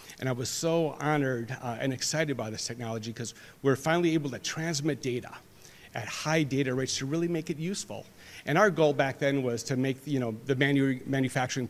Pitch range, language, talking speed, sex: 110-145 Hz, English, 200 wpm, male